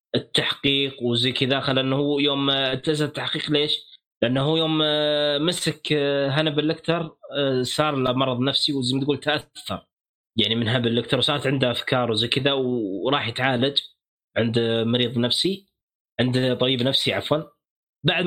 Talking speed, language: 140 wpm, Arabic